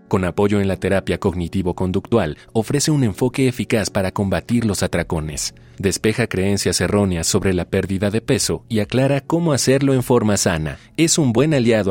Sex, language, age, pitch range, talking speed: male, Spanish, 40-59, 90-120 Hz, 165 wpm